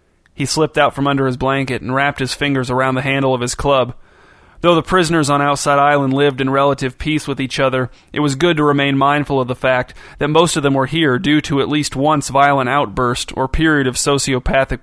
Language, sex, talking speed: English, male, 225 wpm